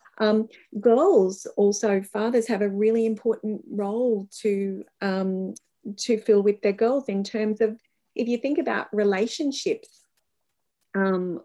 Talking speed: 130 wpm